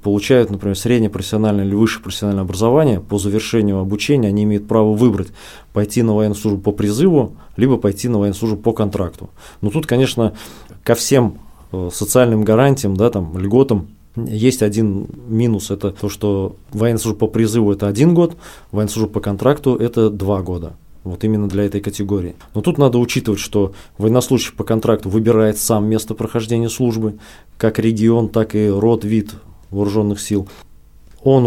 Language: Russian